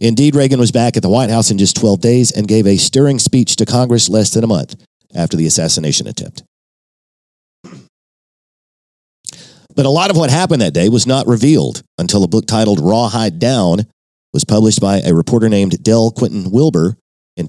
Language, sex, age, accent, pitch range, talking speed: English, male, 50-69, American, 100-130 Hz, 185 wpm